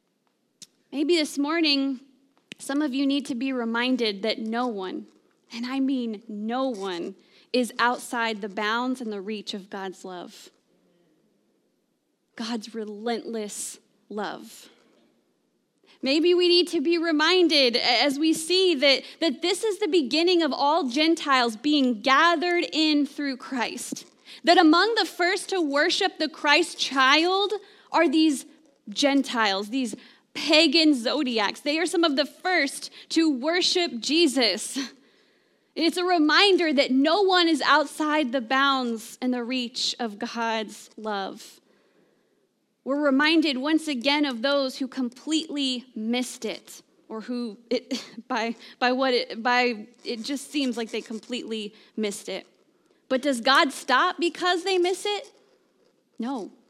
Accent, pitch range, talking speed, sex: American, 240-320 Hz, 135 wpm, female